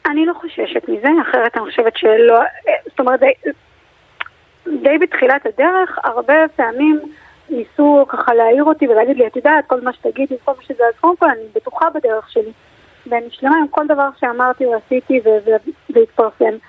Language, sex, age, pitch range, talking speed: Hebrew, female, 30-49, 235-305 Hz, 165 wpm